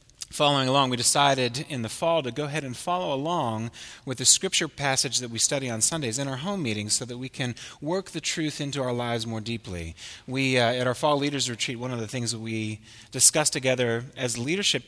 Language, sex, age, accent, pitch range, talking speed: English, male, 30-49, American, 110-145 Hz, 220 wpm